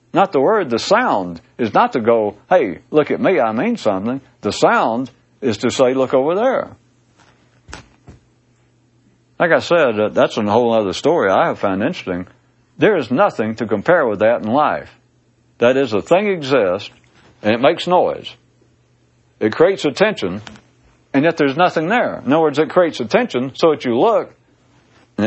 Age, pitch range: 60-79, 120-155 Hz